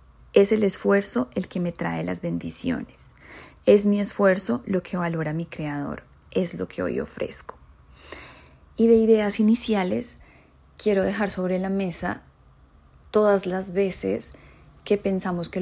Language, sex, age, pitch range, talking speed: Spanish, female, 20-39, 170-200 Hz, 140 wpm